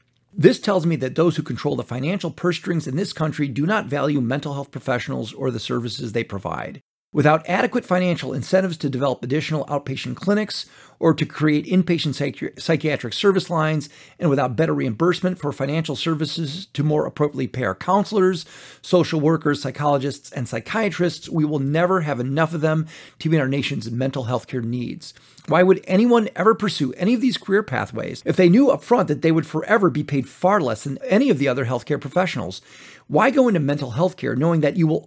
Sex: male